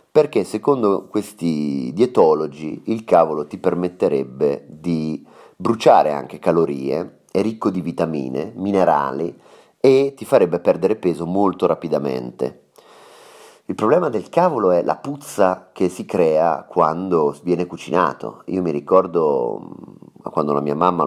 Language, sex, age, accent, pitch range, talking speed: Italian, male, 30-49, native, 80-110 Hz, 125 wpm